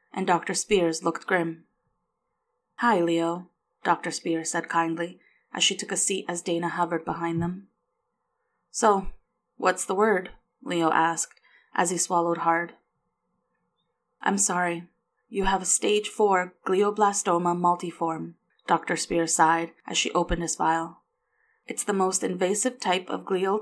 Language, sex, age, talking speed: English, female, 20-39, 140 wpm